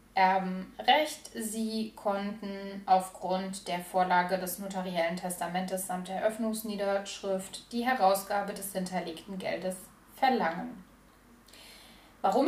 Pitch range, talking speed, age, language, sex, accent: 185-220 Hz, 90 wpm, 20-39, German, female, German